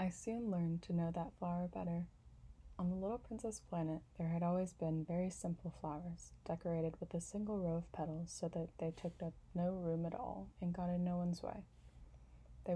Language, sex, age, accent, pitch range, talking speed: English, female, 20-39, American, 155-180 Hz, 200 wpm